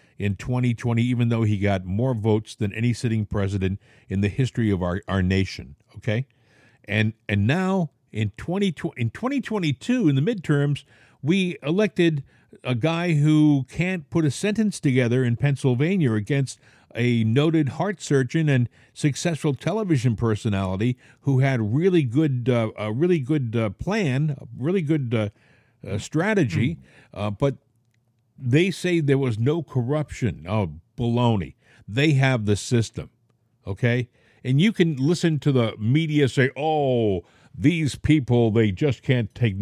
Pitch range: 115-155 Hz